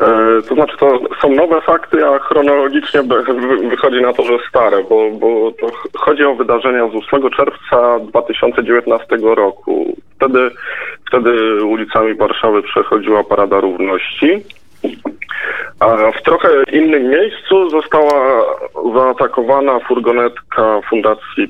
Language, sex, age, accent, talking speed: Polish, male, 20-39, native, 110 wpm